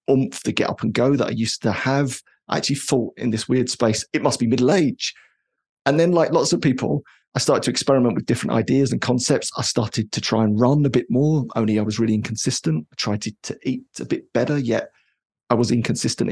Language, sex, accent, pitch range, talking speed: English, male, British, 115-140 Hz, 235 wpm